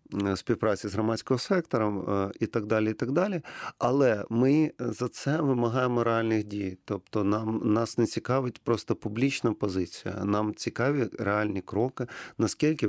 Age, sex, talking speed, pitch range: 40-59, male, 140 wpm, 105-125 Hz